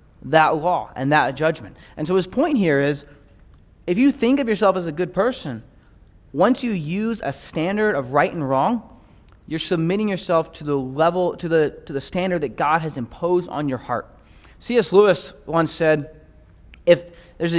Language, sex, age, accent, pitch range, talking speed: English, male, 20-39, American, 140-190 Hz, 180 wpm